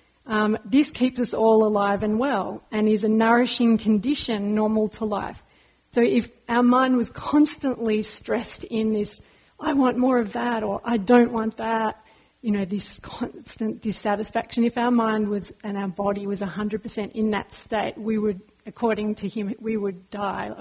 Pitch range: 205-235 Hz